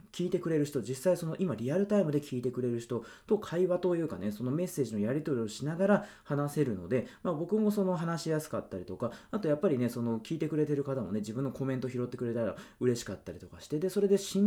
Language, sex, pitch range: Japanese, male, 110-175 Hz